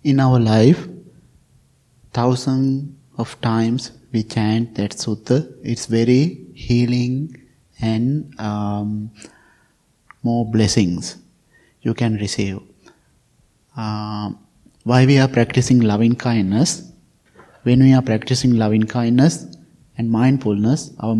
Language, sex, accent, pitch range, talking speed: English, male, Indian, 110-130 Hz, 100 wpm